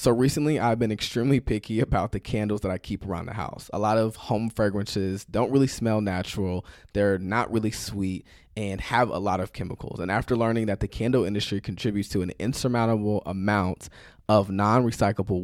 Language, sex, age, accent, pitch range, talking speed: English, male, 20-39, American, 95-115 Hz, 185 wpm